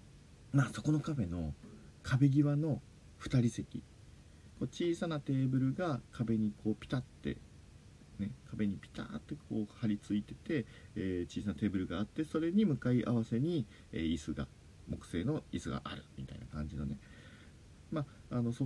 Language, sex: Japanese, male